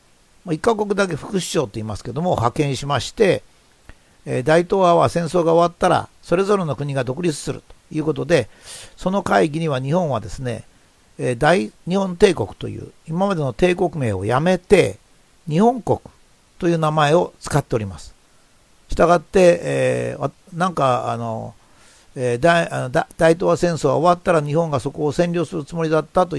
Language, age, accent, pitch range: Japanese, 60-79, native, 125-175 Hz